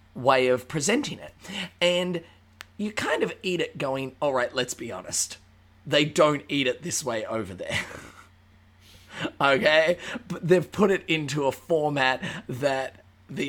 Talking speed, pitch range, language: 150 wpm, 120-150 Hz, English